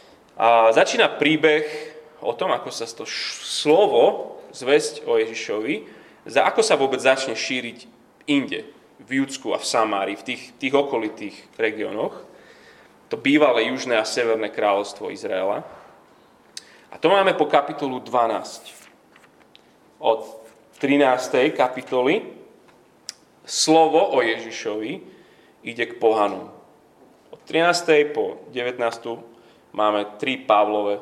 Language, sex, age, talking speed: Slovak, male, 30-49, 110 wpm